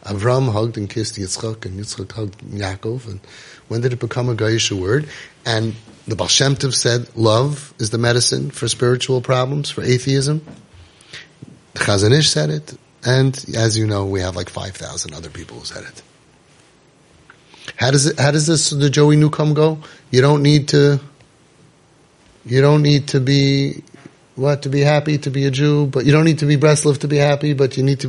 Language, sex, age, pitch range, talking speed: English, male, 30-49, 115-145 Hz, 190 wpm